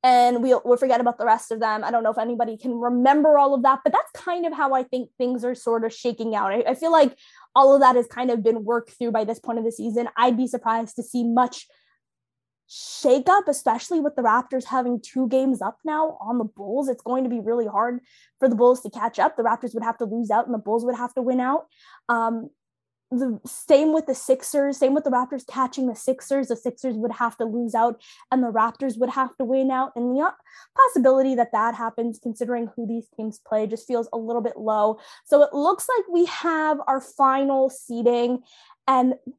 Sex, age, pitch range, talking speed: female, 20-39, 235-275 Hz, 235 wpm